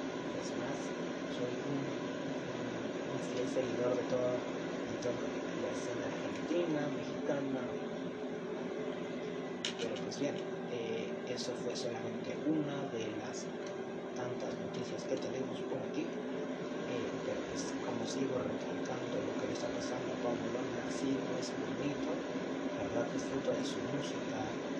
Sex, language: male, Spanish